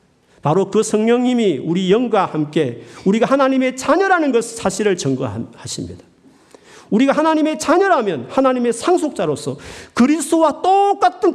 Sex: male